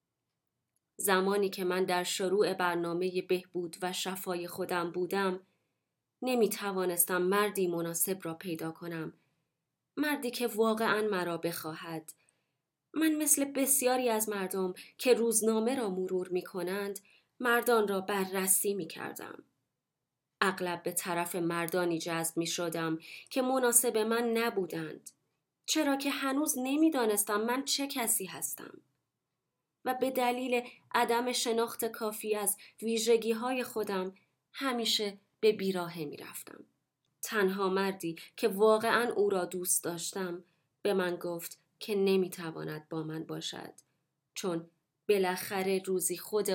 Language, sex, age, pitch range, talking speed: Persian, female, 20-39, 170-225 Hz, 110 wpm